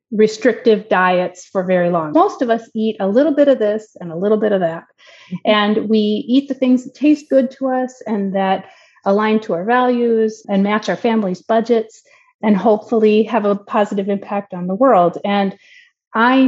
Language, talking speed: English, 190 wpm